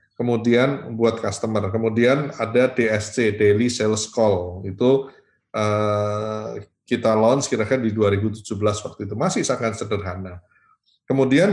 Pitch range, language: 105-130 Hz, Indonesian